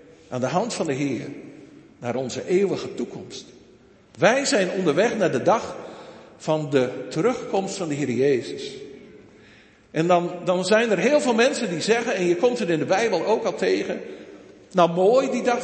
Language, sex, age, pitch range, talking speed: Dutch, male, 50-69, 155-225 Hz, 180 wpm